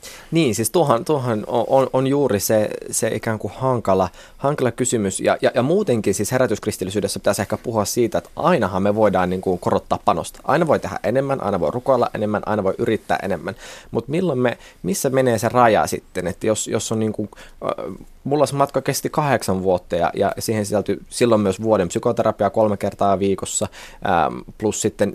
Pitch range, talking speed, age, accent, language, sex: 95-130 Hz, 175 wpm, 20-39, native, Finnish, male